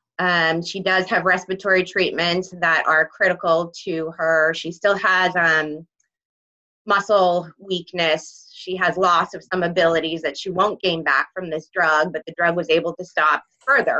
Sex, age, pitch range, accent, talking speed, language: female, 20-39, 155-180 Hz, American, 165 wpm, English